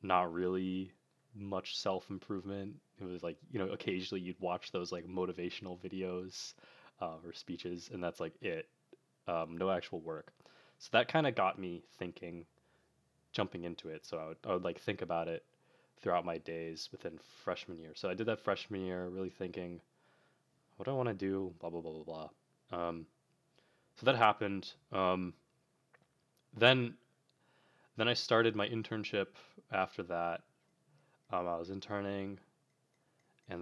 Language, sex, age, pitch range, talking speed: English, male, 20-39, 85-100 Hz, 160 wpm